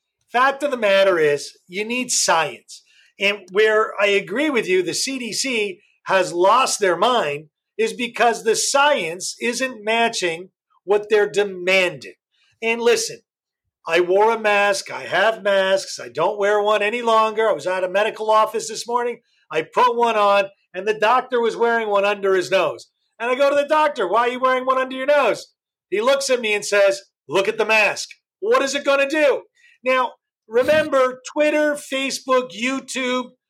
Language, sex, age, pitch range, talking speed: English, male, 40-59, 210-275 Hz, 180 wpm